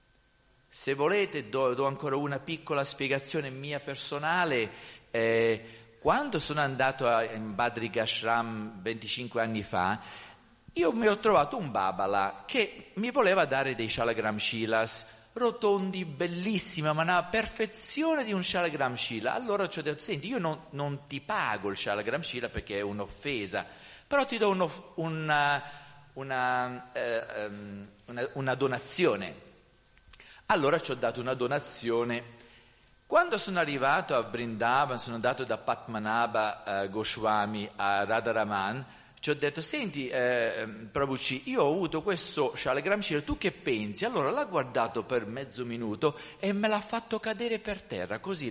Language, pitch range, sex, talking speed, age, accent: Italian, 115-180 Hz, male, 140 wpm, 50-69, native